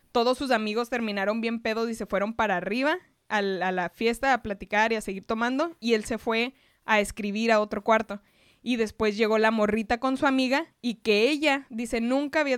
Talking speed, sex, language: 215 wpm, female, Spanish